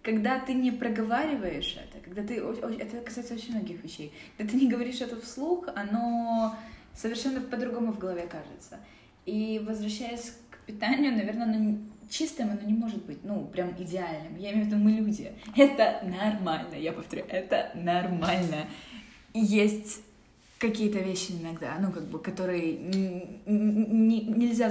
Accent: native